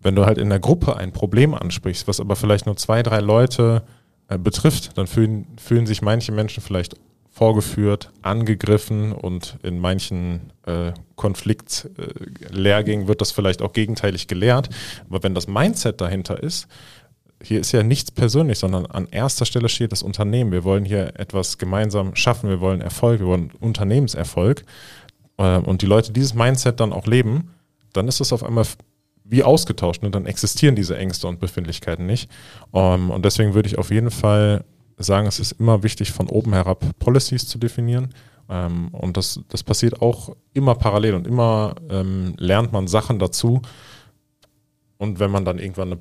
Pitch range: 95-115 Hz